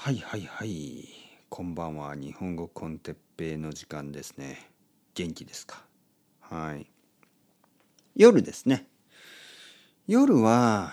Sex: male